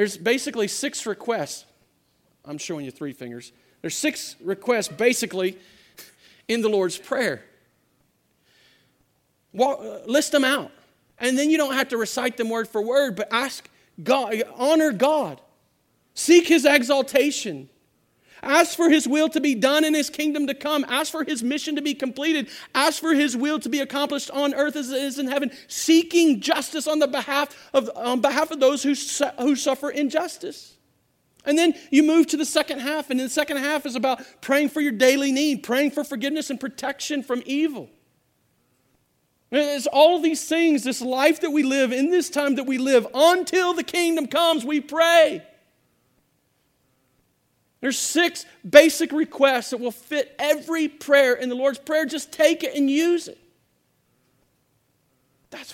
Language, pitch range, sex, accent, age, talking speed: English, 240-300 Hz, male, American, 40-59, 170 wpm